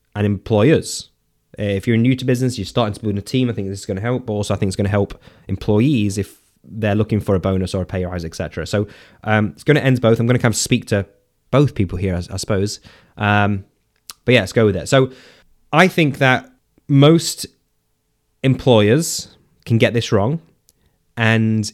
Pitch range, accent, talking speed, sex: 100-135 Hz, British, 215 wpm, male